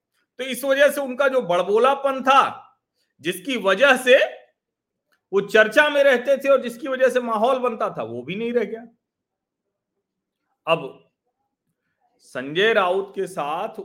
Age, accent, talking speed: 40-59, native, 145 wpm